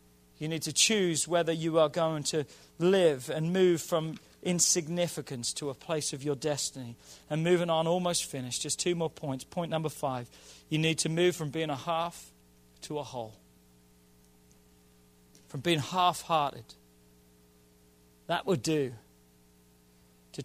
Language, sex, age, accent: English, male, 40-59, British